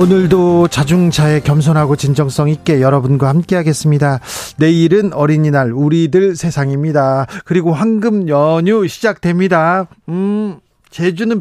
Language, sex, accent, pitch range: Korean, male, native, 150-200 Hz